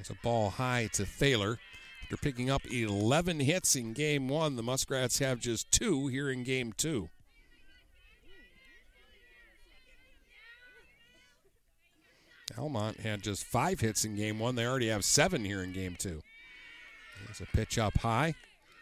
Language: English